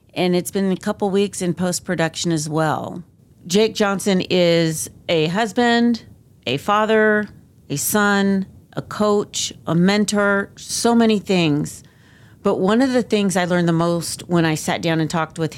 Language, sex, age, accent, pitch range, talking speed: English, female, 40-59, American, 150-185 Hz, 165 wpm